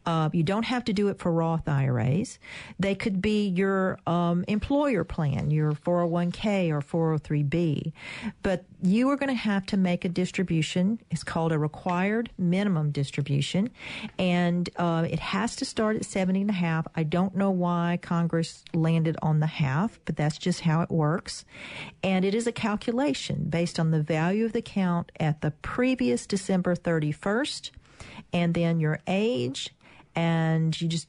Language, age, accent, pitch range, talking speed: English, 50-69, American, 160-195 Hz, 170 wpm